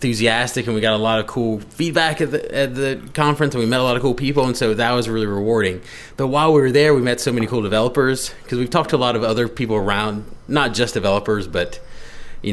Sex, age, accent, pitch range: male, 30-49, American, 100-125 Hz